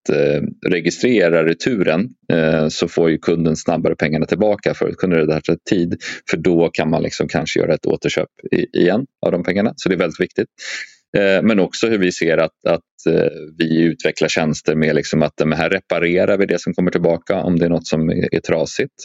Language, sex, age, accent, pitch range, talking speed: Swedish, male, 30-49, native, 80-95 Hz, 200 wpm